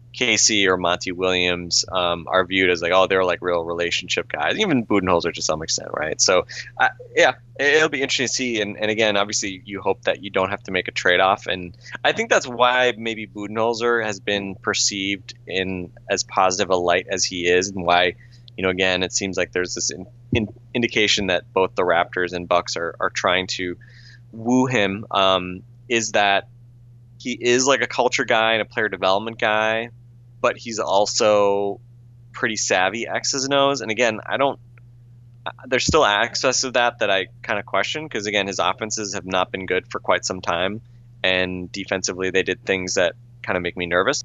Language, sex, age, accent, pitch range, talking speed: English, male, 20-39, American, 95-120 Hz, 195 wpm